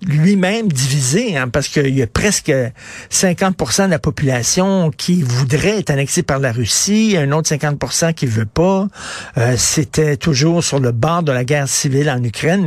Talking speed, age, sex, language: 175 wpm, 60-79, male, French